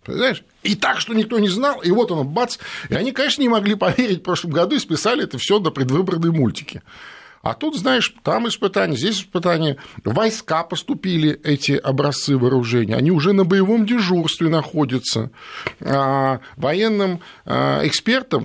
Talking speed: 155 wpm